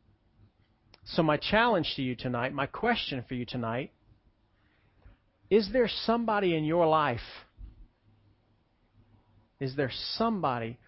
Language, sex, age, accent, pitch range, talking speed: English, male, 40-59, American, 110-150 Hz, 110 wpm